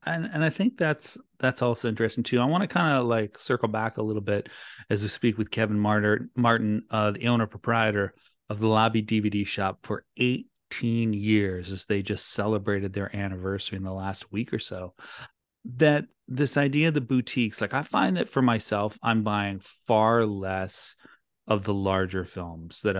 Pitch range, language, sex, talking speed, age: 95-120 Hz, English, male, 190 wpm, 30-49